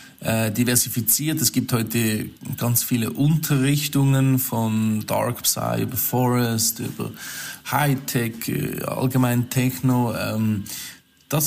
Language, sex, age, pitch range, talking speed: German, male, 20-39, 110-130 Hz, 90 wpm